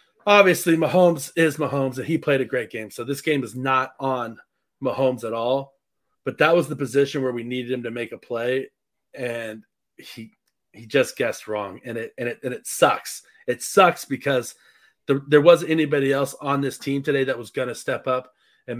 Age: 30-49